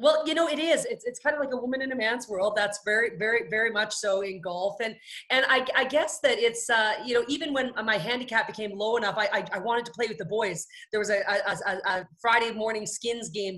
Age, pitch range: 30-49, 200-235 Hz